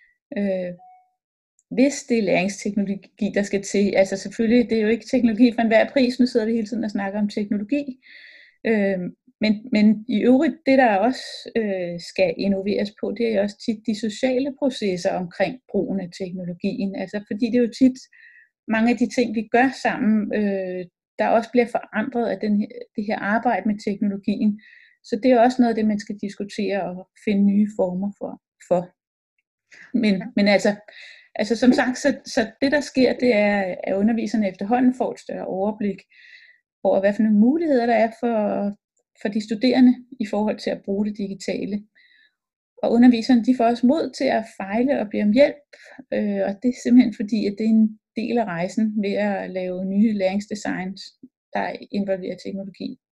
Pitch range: 205-250 Hz